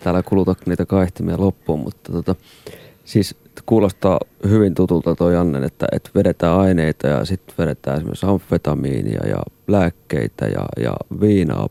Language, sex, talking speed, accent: Finnish, male, 140 wpm, native